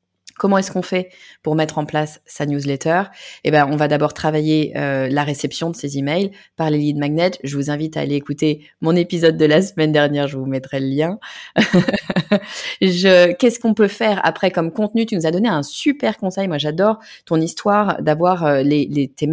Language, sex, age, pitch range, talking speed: French, female, 20-39, 150-200 Hz, 210 wpm